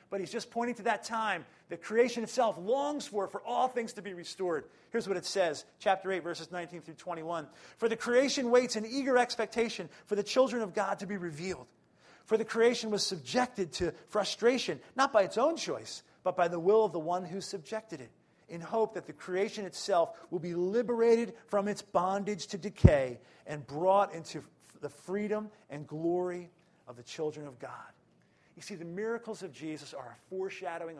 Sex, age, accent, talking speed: male, 40-59, American, 195 wpm